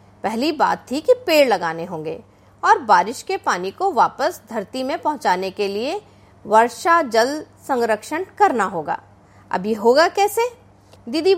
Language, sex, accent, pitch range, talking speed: Hindi, female, native, 205-330 Hz, 140 wpm